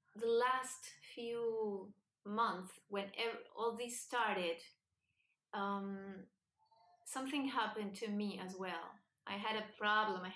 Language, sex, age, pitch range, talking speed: English, female, 30-49, 210-265 Hz, 115 wpm